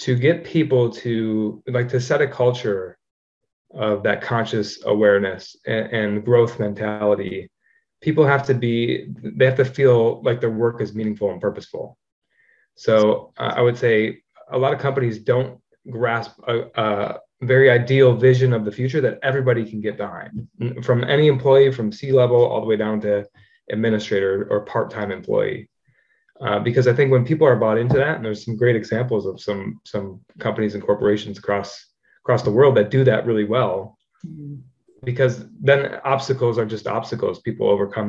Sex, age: male, 20-39